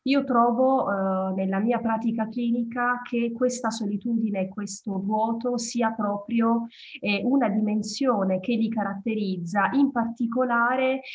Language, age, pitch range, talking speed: Italian, 30-49, 195-245 Hz, 125 wpm